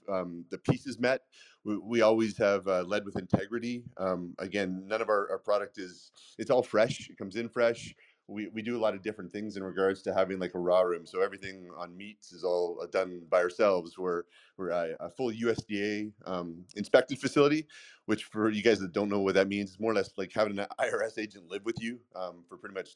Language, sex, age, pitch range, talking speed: English, male, 30-49, 95-115 Hz, 225 wpm